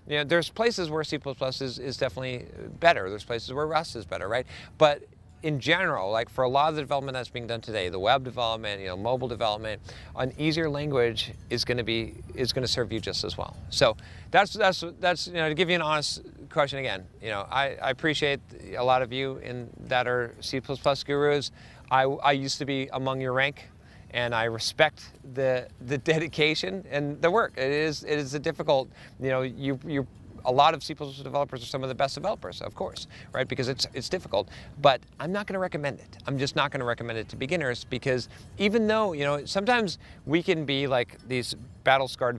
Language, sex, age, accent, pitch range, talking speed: English, male, 40-59, American, 125-155 Hz, 215 wpm